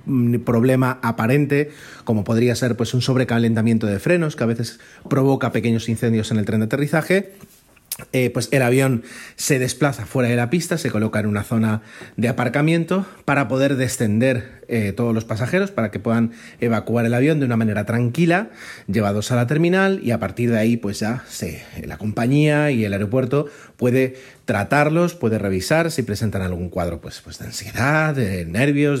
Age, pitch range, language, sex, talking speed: 30-49, 110-140 Hz, Spanish, male, 180 wpm